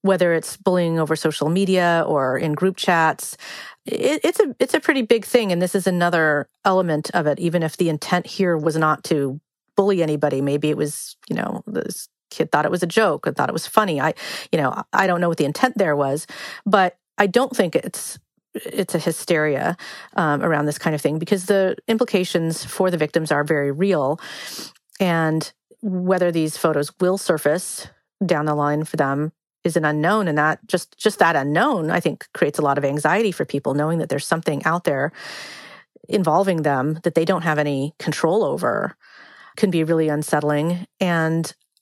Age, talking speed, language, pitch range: 40-59, 195 wpm, English, 155-190 Hz